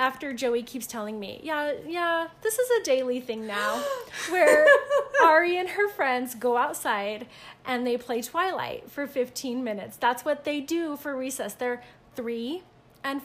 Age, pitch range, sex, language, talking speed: 30-49, 225-295 Hz, female, English, 165 wpm